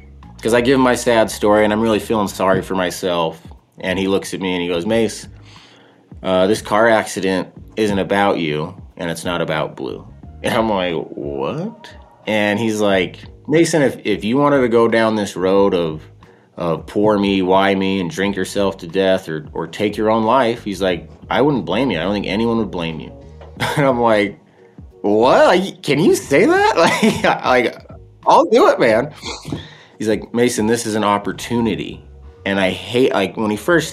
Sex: male